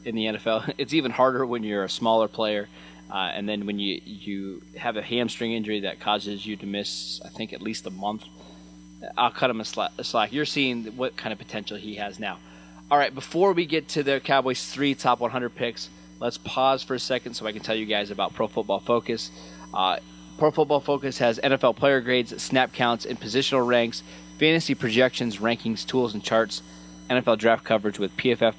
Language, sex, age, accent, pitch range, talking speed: English, male, 20-39, American, 105-135 Hz, 205 wpm